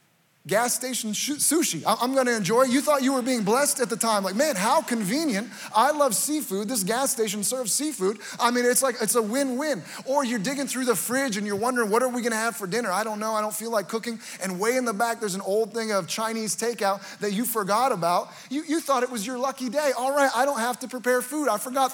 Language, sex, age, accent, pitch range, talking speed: English, male, 30-49, American, 215-265 Hz, 260 wpm